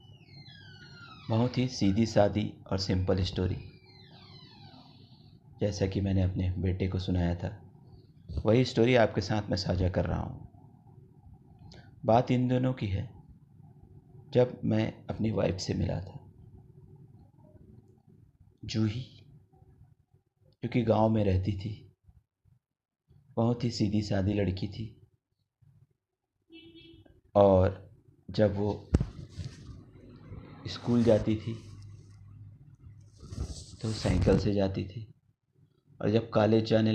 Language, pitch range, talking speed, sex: Hindi, 100-125 Hz, 100 wpm, male